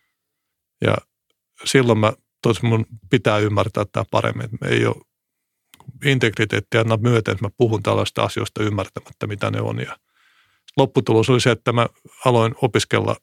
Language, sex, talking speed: Finnish, male, 130 wpm